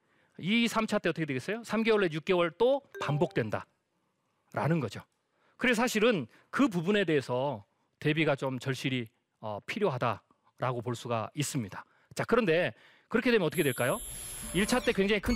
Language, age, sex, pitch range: Korean, 40-59, male, 140-220 Hz